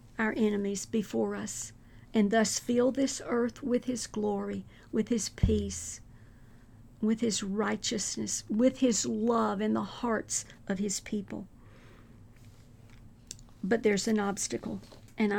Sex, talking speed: female, 125 wpm